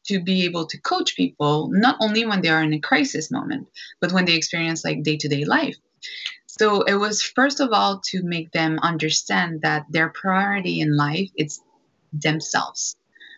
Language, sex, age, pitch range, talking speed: English, female, 20-39, 160-205 Hz, 175 wpm